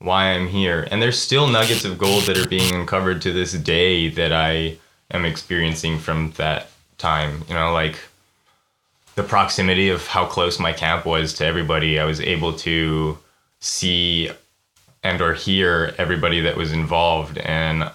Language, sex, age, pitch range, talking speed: English, male, 20-39, 80-100 Hz, 165 wpm